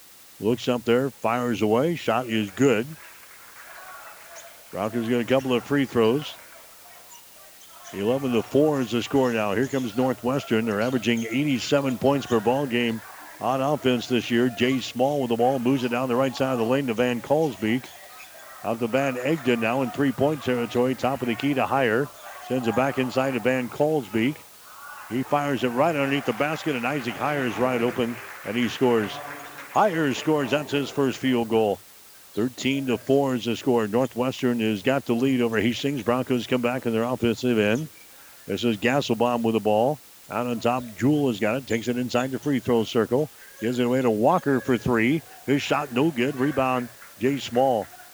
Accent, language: American, English